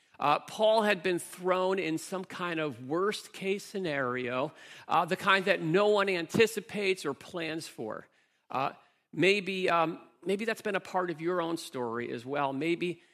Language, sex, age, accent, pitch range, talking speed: English, male, 50-69, American, 155-195 Hz, 165 wpm